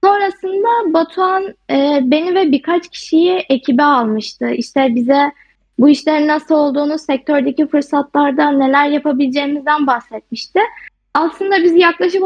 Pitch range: 250-330 Hz